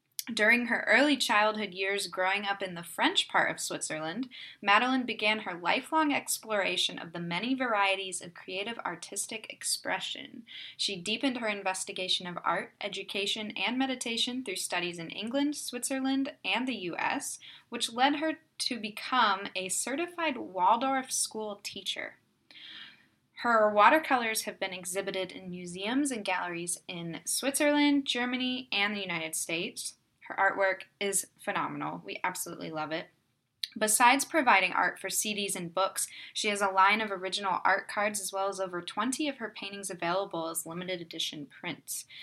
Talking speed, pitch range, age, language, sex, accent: 150 wpm, 180-240 Hz, 10-29, English, female, American